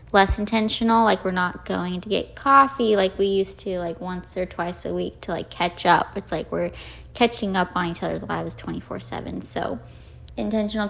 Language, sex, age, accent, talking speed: English, female, 20-39, American, 200 wpm